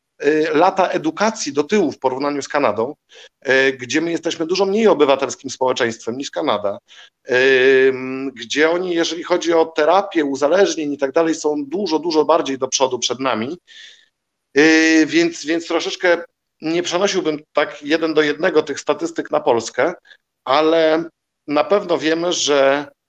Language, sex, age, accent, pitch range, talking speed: Polish, male, 50-69, native, 140-170 Hz, 140 wpm